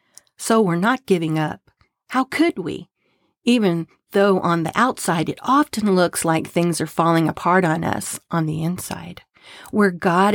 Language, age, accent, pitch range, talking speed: English, 40-59, American, 165-185 Hz, 160 wpm